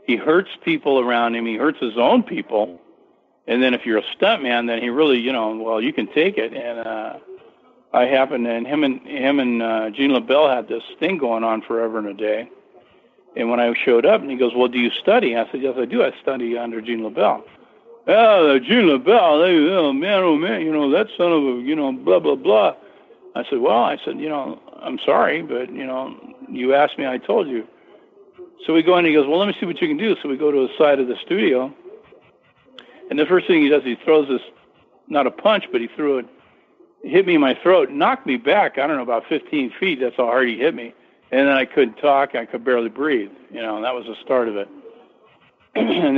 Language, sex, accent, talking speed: English, male, American, 240 wpm